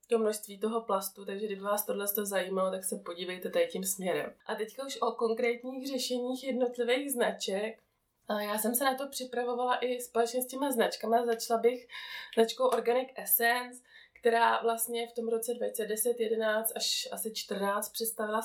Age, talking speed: 20-39, 170 wpm